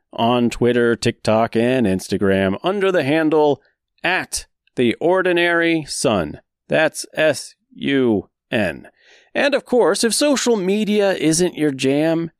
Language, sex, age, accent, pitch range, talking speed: English, male, 30-49, American, 115-185 Hz, 110 wpm